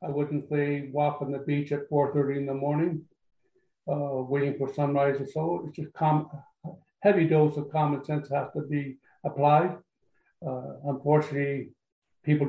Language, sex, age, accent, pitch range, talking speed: English, male, 60-79, American, 140-155 Hz, 160 wpm